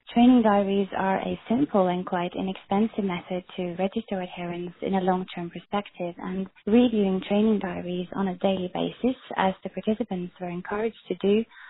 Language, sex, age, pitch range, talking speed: English, female, 20-39, 185-215 Hz, 160 wpm